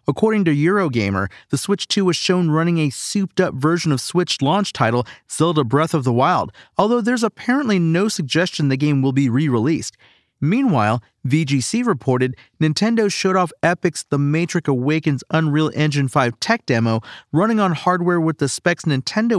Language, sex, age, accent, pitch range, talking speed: English, male, 40-59, American, 130-165 Hz, 165 wpm